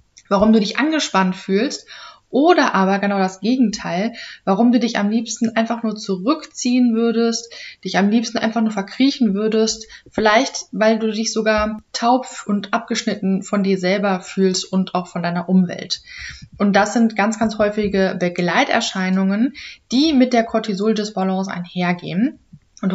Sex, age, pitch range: female, 20-39, 195-235 Hz